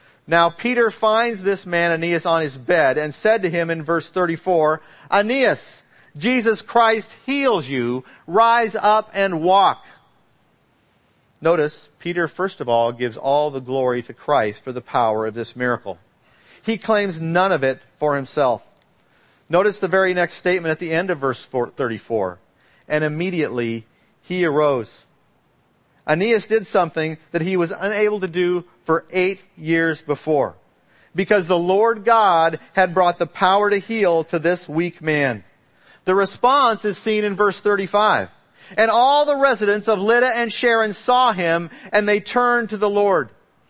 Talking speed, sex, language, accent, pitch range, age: 155 wpm, male, English, American, 155-215 Hz, 50-69